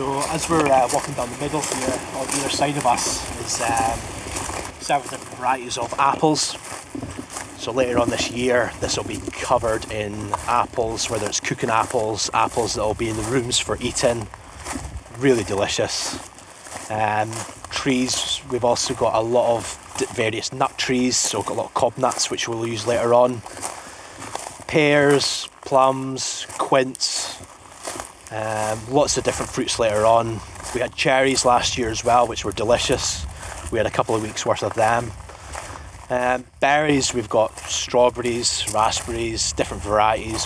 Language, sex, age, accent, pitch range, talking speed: English, male, 30-49, British, 95-125 Hz, 165 wpm